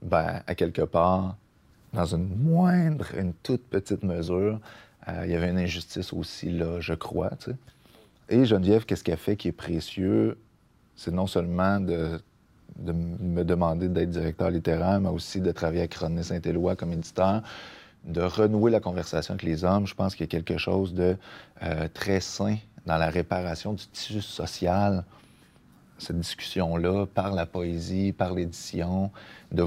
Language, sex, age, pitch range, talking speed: French, male, 30-49, 85-100 Hz, 170 wpm